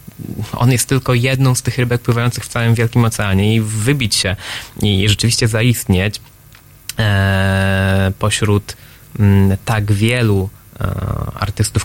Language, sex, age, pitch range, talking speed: Polish, male, 20-39, 105-135 Hz, 110 wpm